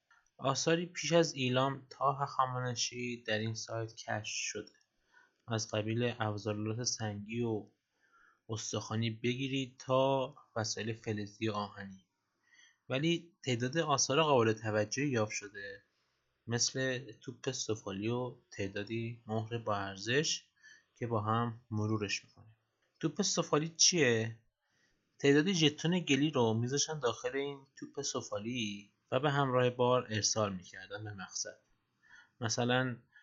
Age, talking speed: 20-39, 115 wpm